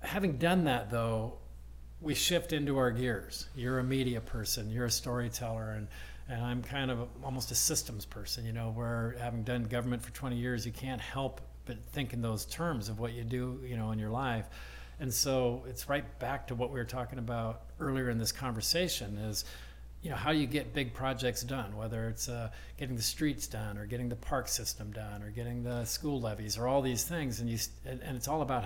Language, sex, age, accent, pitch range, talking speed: English, male, 50-69, American, 115-135 Hz, 215 wpm